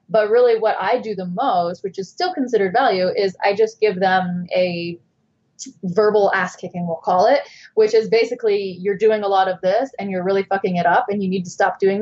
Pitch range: 180-220 Hz